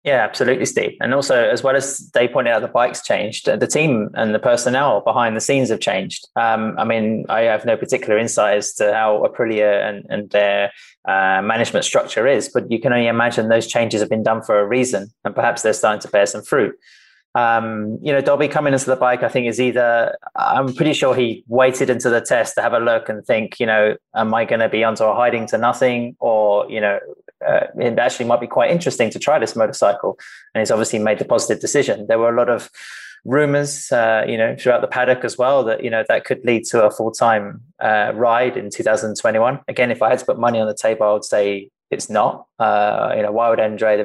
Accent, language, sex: British, English, male